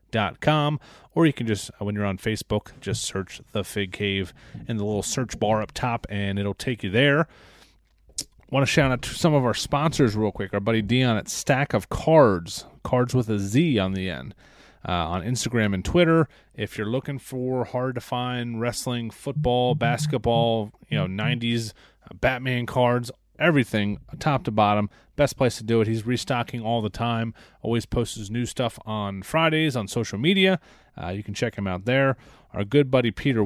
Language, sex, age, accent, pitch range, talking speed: English, male, 30-49, American, 105-135 Hz, 190 wpm